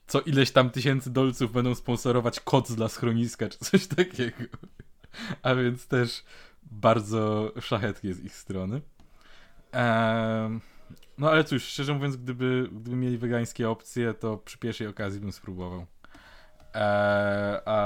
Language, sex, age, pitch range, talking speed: Polish, male, 20-39, 100-130 Hz, 130 wpm